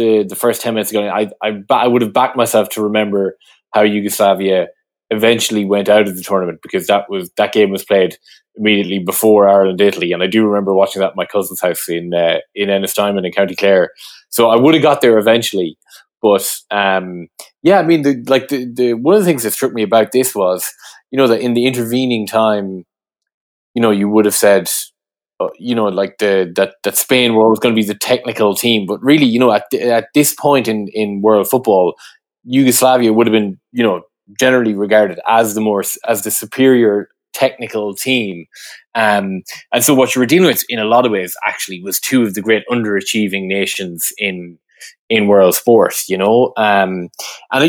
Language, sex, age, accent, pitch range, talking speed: English, male, 20-39, Irish, 100-120 Hz, 205 wpm